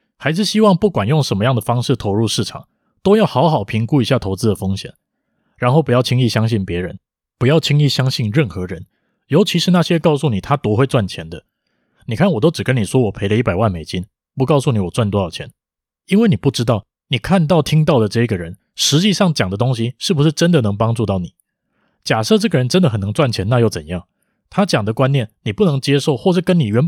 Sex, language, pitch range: male, Chinese, 105-160 Hz